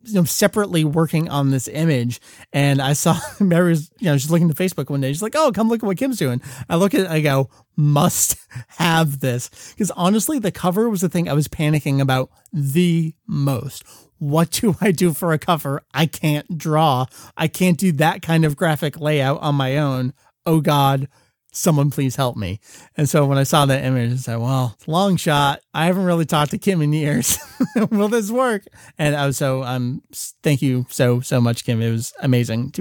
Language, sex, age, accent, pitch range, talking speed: English, male, 30-49, American, 135-170 Hz, 205 wpm